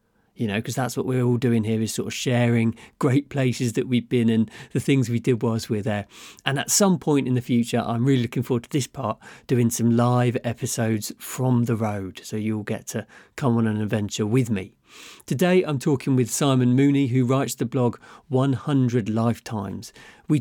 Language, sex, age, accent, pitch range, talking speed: English, male, 40-59, British, 115-140 Hz, 205 wpm